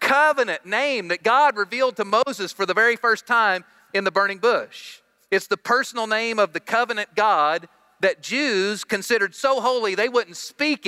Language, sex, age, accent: English, male, 40-59, American